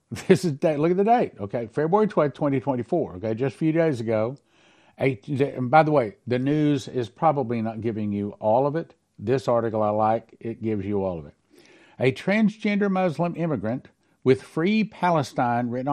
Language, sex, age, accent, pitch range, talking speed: English, male, 60-79, American, 115-160 Hz, 190 wpm